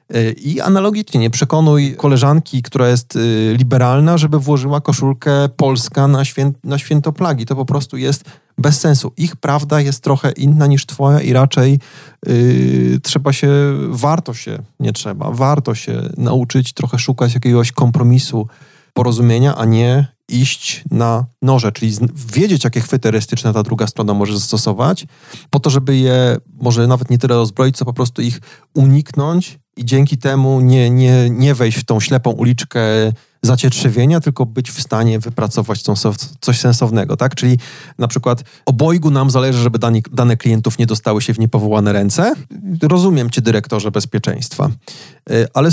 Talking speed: 150 wpm